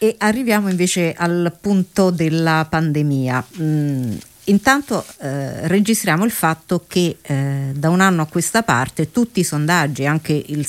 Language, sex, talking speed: Italian, female, 145 wpm